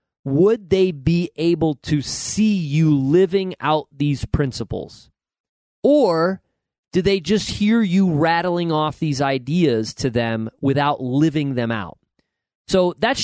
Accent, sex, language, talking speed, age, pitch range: American, male, English, 130 wpm, 30-49, 135-180 Hz